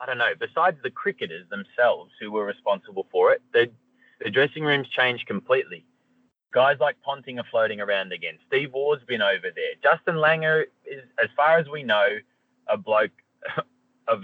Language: English